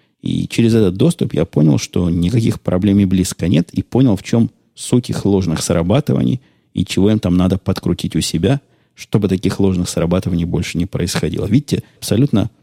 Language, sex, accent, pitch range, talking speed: Russian, male, native, 90-110 Hz, 175 wpm